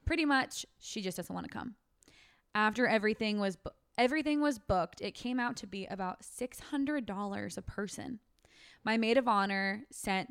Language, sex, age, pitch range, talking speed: English, female, 20-39, 185-240 Hz, 170 wpm